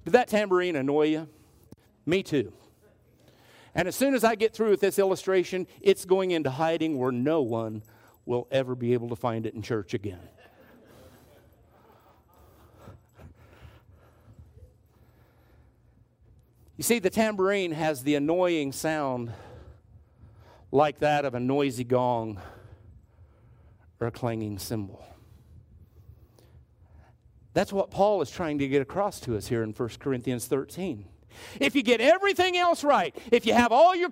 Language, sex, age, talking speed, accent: English, male, 50-69, 135 wpm, American